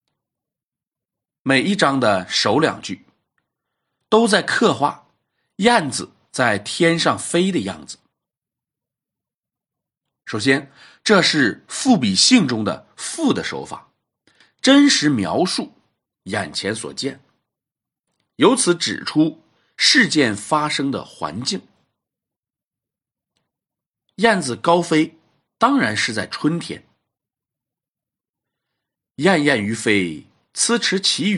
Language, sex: Chinese, male